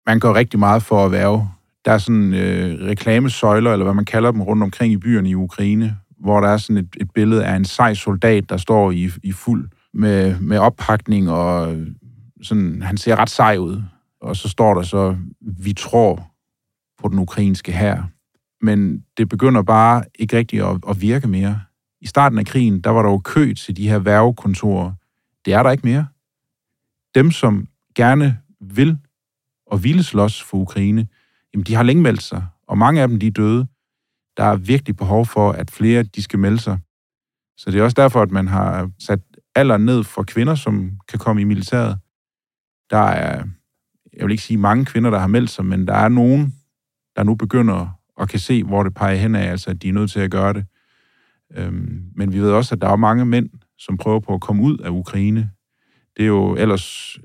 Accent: native